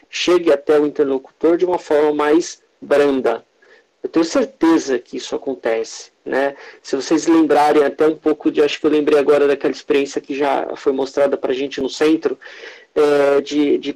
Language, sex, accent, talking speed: Portuguese, male, Brazilian, 175 wpm